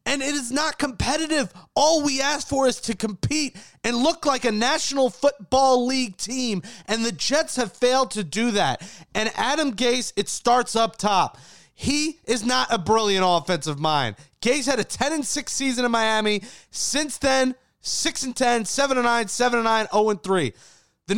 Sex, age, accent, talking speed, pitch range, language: male, 30-49, American, 185 wpm, 190-255 Hz, English